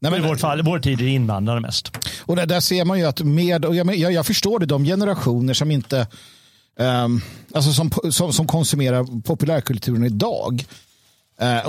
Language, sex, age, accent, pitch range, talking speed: Swedish, male, 50-69, native, 125-175 Hz, 180 wpm